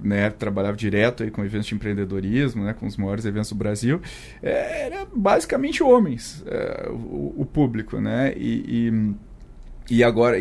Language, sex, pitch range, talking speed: Portuguese, male, 115-150 Hz, 160 wpm